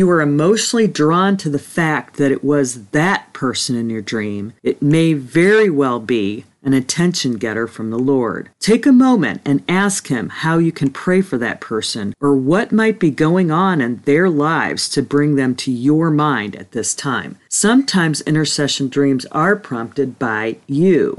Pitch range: 130-175 Hz